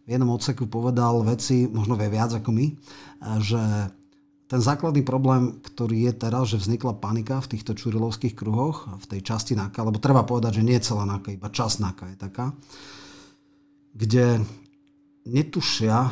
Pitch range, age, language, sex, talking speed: 105-125 Hz, 40-59, Slovak, male, 155 wpm